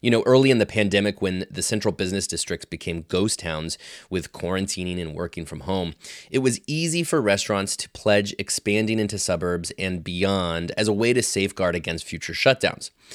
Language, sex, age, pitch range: English, male, 30-49, 90-120 Hz